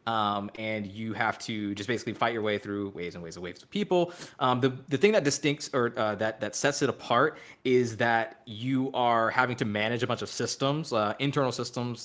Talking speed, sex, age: 225 wpm, male, 20-39